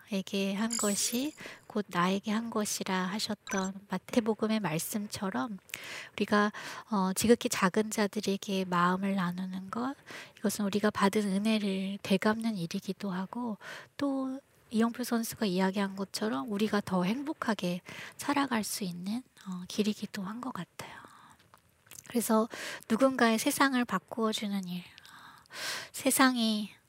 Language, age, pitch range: Korean, 20-39, 195-230 Hz